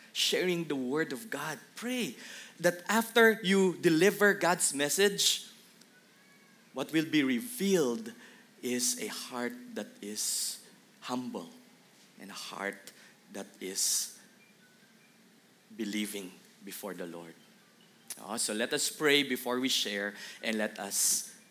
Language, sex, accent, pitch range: English, male, Filipino, 125-210 Hz